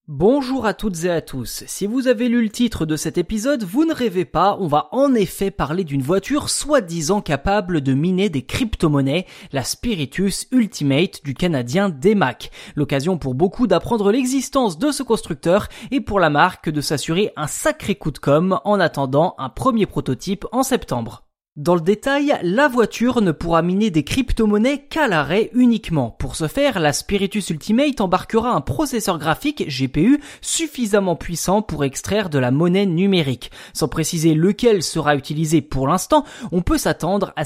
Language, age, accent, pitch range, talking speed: French, 20-39, French, 155-230 Hz, 170 wpm